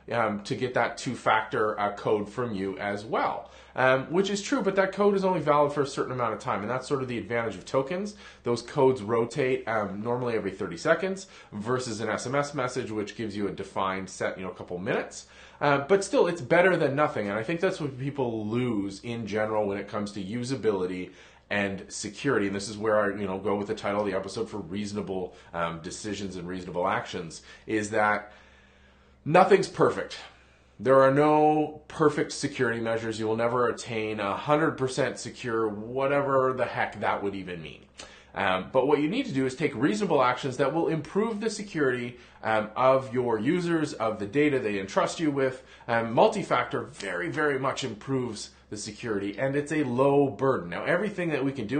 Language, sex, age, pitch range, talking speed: English, male, 30-49, 105-140 Hz, 195 wpm